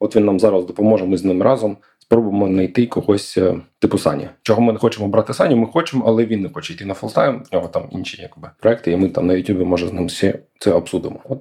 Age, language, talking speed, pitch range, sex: 20-39, Ukrainian, 245 wpm, 95-115 Hz, male